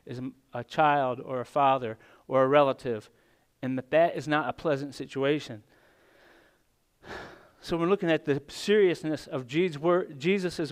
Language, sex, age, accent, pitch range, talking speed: English, male, 40-59, American, 135-170 Hz, 140 wpm